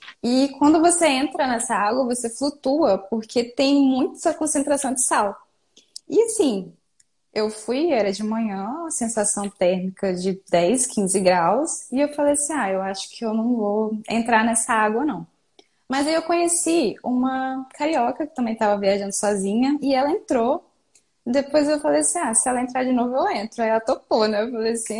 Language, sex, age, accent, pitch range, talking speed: Portuguese, female, 10-29, Brazilian, 205-285 Hz, 180 wpm